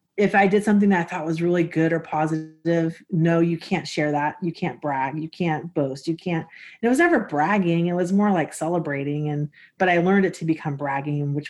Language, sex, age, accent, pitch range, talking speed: English, female, 30-49, American, 155-180 Hz, 225 wpm